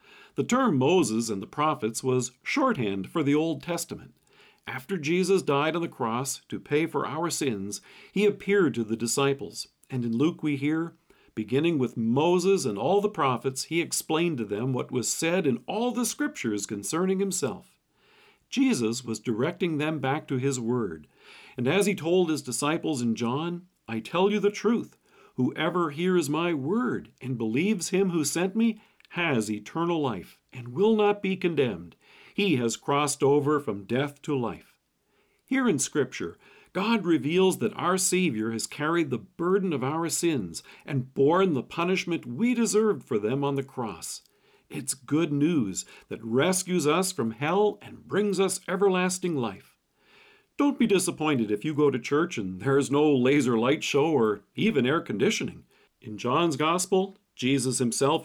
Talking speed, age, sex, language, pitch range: 170 wpm, 50-69, male, English, 130-185 Hz